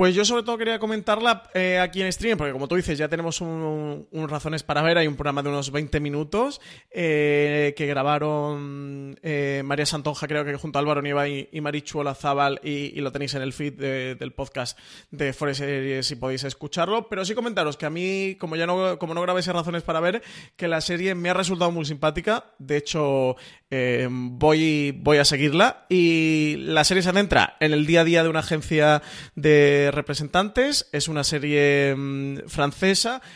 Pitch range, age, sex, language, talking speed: 145-165 Hz, 20-39, male, Spanish, 200 wpm